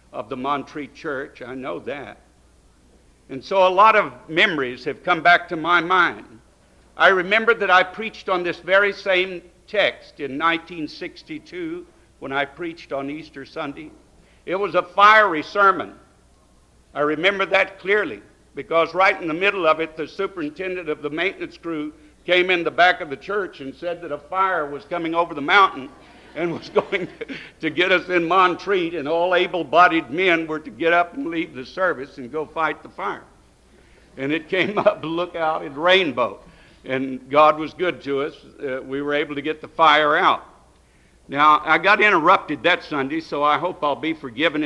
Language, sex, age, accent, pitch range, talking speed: English, male, 60-79, American, 150-185 Hz, 185 wpm